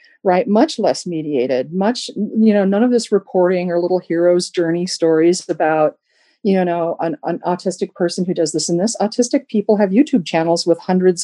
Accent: American